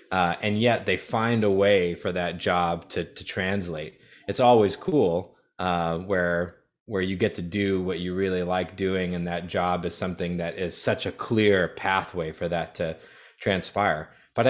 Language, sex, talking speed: English, male, 180 wpm